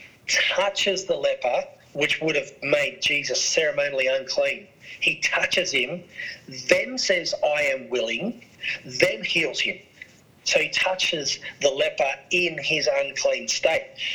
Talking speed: 125 wpm